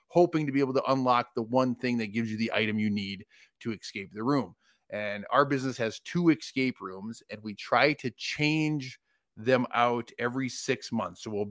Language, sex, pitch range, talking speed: English, male, 110-130 Hz, 205 wpm